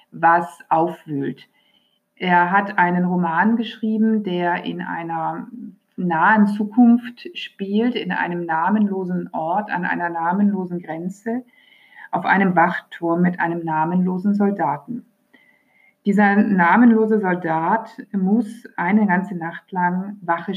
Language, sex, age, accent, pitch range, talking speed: German, female, 50-69, German, 175-215 Hz, 110 wpm